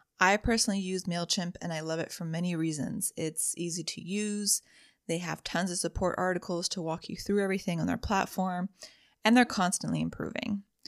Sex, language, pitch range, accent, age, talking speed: female, English, 165-215 Hz, American, 20-39, 180 wpm